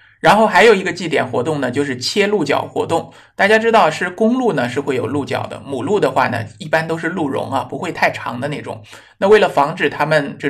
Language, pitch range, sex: Chinese, 125-170 Hz, male